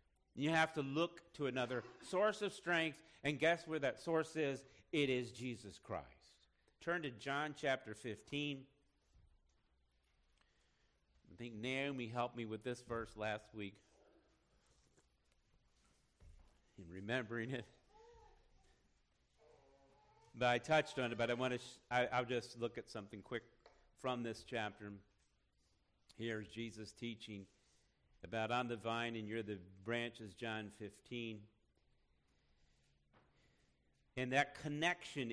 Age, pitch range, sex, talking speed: 50-69, 110-145 Hz, male, 120 wpm